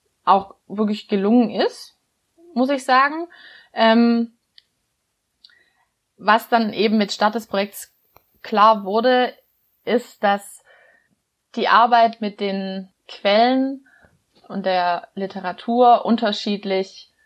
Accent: German